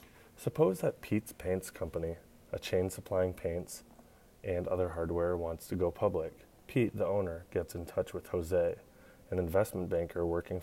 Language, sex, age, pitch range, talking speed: English, male, 20-39, 85-95 Hz, 160 wpm